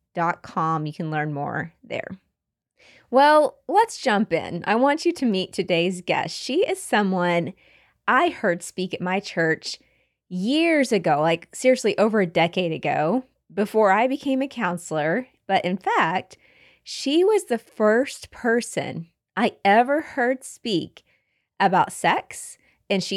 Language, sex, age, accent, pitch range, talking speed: English, female, 20-39, American, 180-265 Hz, 140 wpm